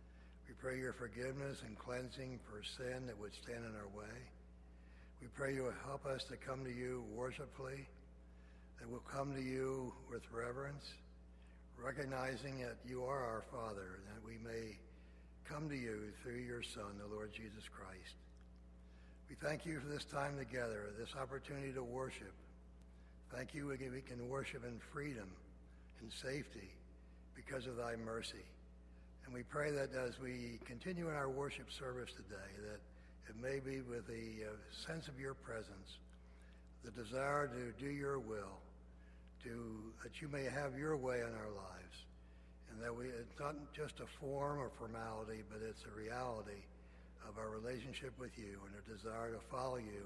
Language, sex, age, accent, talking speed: English, male, 60-79, American, 165 wpm